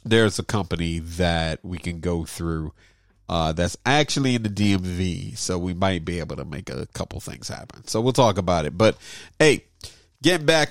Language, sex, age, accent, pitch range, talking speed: English, male, 40-59, American, 95-145 Hz, 190 wpm